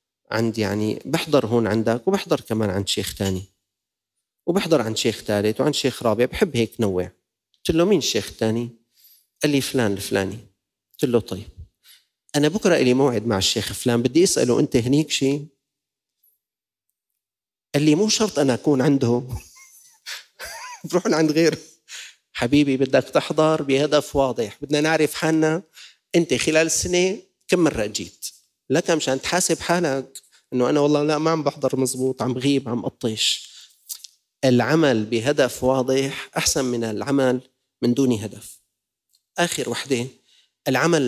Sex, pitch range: male, 115-145 Hz